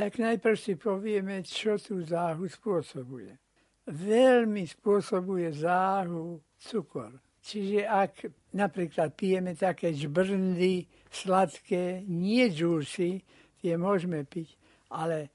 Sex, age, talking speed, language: male, 60-79, 100 wpm, Slovak